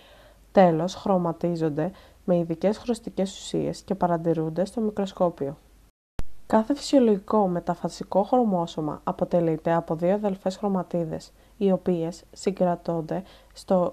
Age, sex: 20-39, female